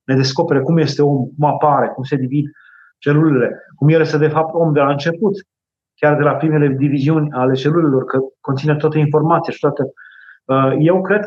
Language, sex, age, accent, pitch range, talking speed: Romanian, male, 30-49, native, 130-155 Hz, 180 wpm